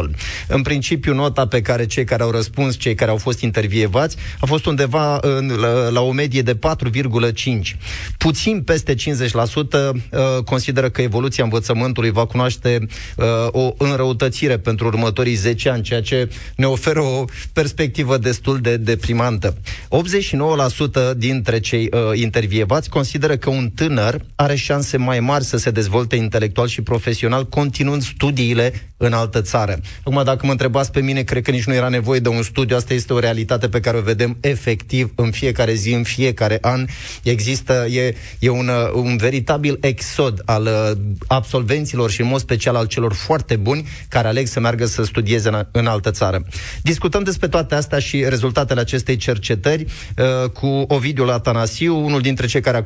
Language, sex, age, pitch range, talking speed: Romanian, male, 30-49, 115-135 Hz, 160 wpm